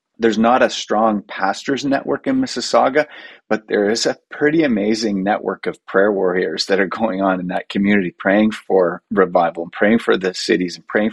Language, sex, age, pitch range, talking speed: English, male, 30-49, 95-110 Hz, 180 wpm